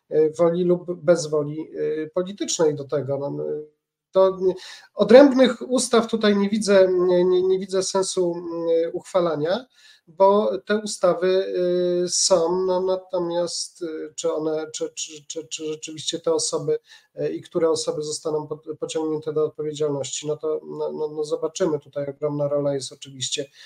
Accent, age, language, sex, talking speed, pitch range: native, 40-59, Polish, male, 130 wpm, 150-185 Hz